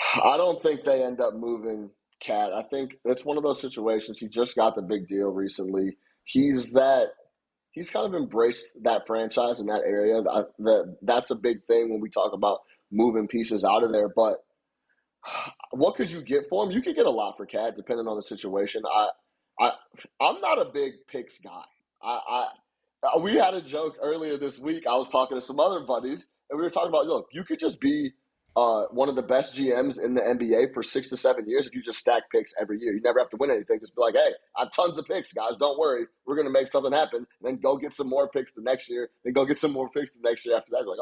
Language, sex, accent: English, male, American